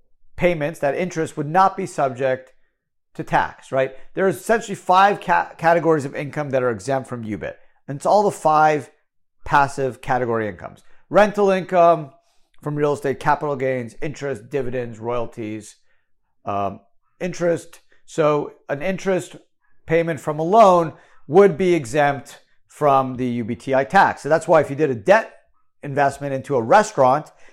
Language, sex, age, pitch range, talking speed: English, male, 40-59, 130-165 Hz, 150 wpm